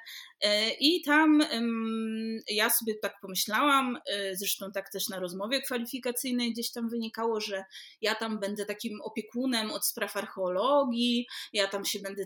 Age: 20-39